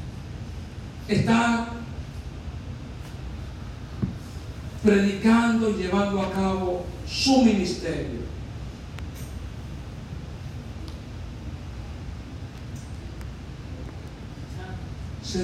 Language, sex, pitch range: Spanish, male, 130-195 Hz